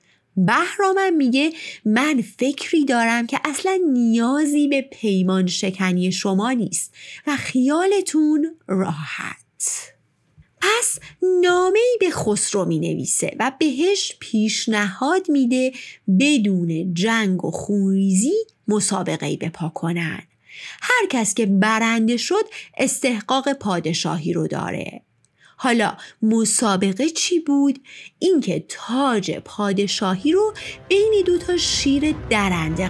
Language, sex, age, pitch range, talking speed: Persian, female, 30-49, 195-325 Hz, 100 wpm